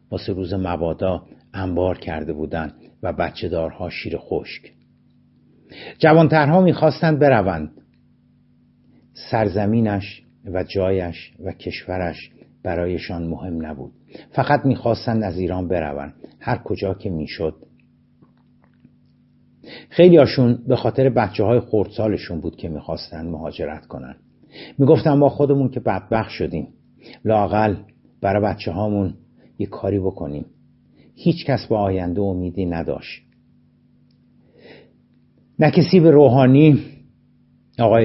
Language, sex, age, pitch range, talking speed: Persian, male, 60-79, 90-120 Hz, 105 wpm